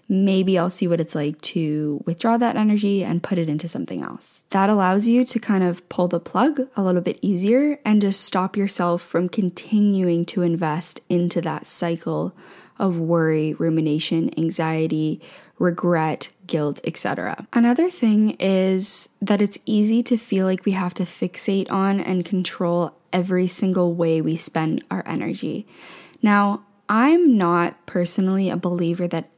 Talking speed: 155 wpm